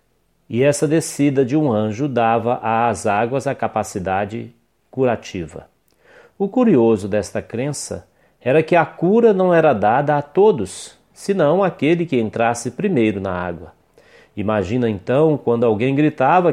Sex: male